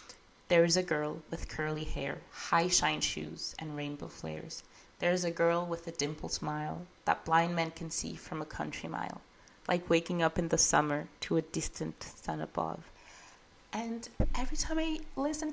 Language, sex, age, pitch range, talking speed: English, female, 20-39, 155-225 Hz, 180 wpm